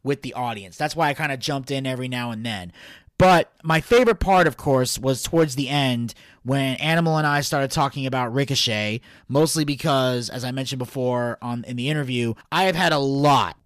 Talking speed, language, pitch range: 205 wpm, English, 125-155 Hz